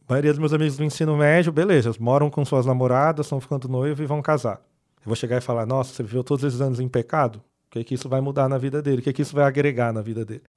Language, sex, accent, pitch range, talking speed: Portuguese, male, Brazilian, 125-155 Hz, 300 wpm